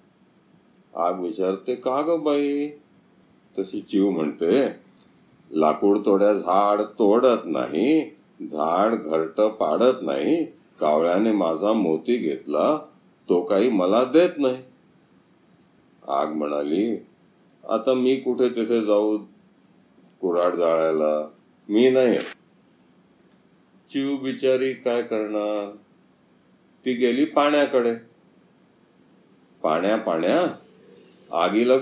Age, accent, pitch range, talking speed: 50-69, native, 100-130 Hz, 65 wpm